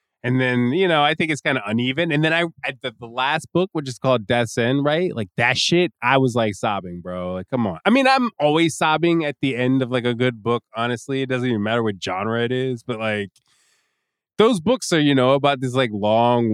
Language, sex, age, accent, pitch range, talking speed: English, male, 20-39, American, 105-145 Hz, 245 wpm